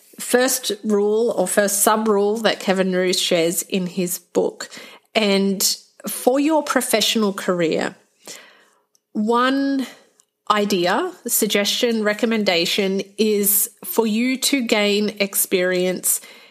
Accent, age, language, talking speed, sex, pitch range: Australian, 30-49, English, 100 wpm, female, 190-230 Hz